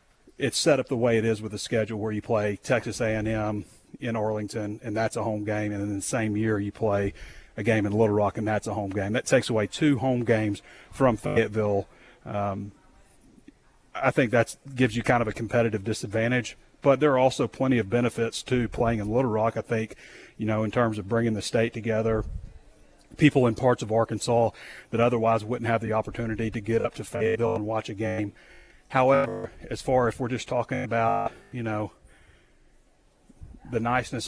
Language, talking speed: English, 200 wpm